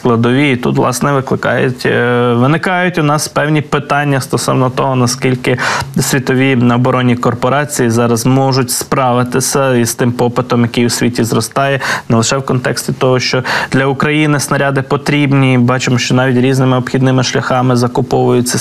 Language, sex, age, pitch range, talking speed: Ukrainian, male, 20-39, 125-145 Hz, 140 wpm